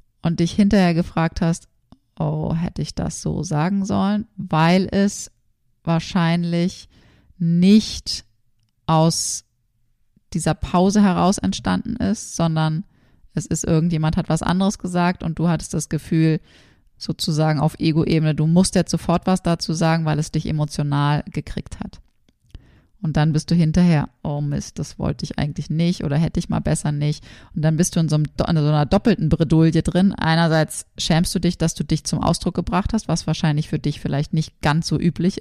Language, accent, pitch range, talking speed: German, German, 150-180 Hz, 170 wpm